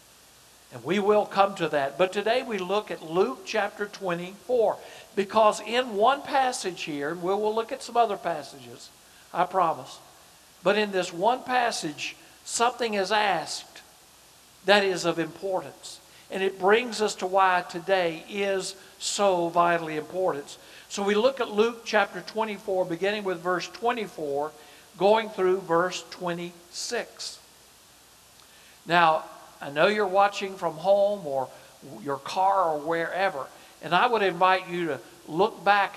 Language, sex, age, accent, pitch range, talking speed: English, male, 60-79, American, 170-215 Hz, 145 wpm